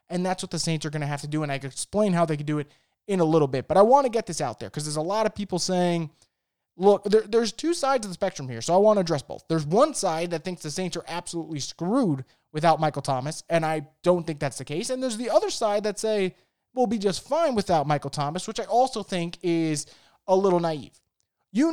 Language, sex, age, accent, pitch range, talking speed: English, male, 30-49, American, 160-215 Hz, 265 wpm